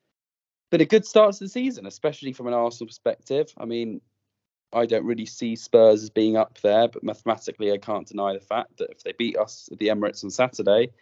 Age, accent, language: 20-39, British, English